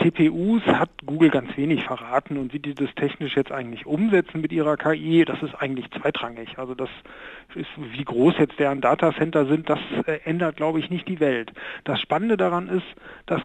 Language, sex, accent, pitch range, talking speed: German, male, German, 150-180 Hz, 185 wpm